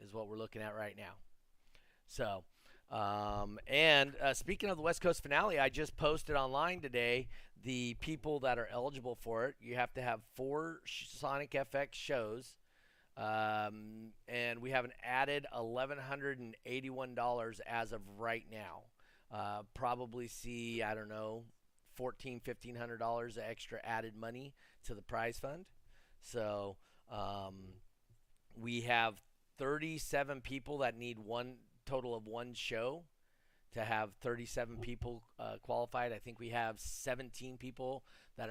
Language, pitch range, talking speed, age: English, 110-130 Hz, 150 wpm, 30-49